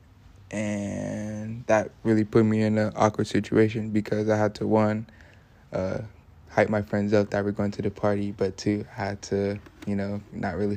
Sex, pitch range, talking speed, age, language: male, 100-115 Hz, 190 wpm, 20-39, English